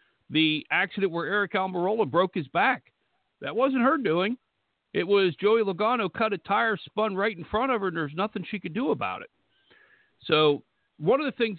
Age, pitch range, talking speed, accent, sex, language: 60-79, 140-185 Hz, 195 wpm, American, male, English